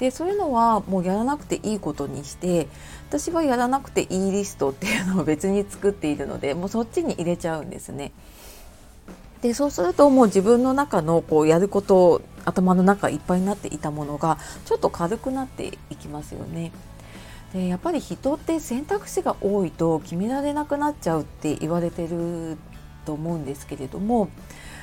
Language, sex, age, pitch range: Japanese, female, 40-59, 160-250 Hz